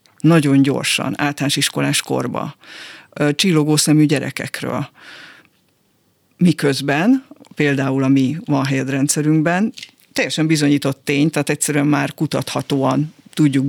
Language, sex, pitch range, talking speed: Hungarian, female, 140-165 Hz, 95 wpm